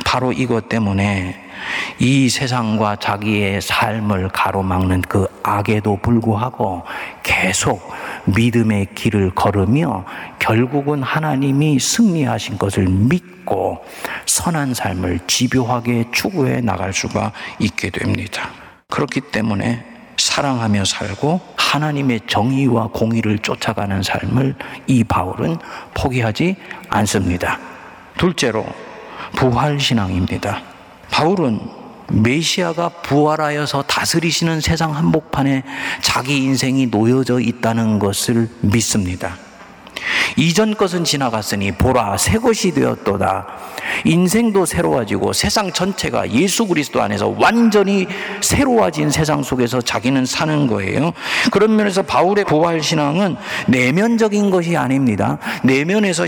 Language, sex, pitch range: Korean, male, 110-170 Hz